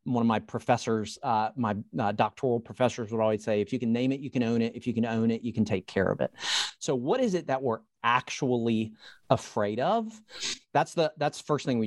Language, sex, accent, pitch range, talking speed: English, male, American, 110-140 Hz, 240 wpm